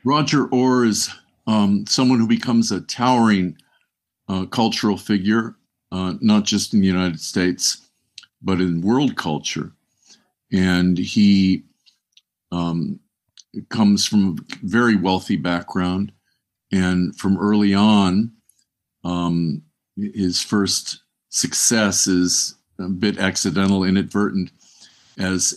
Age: 50-69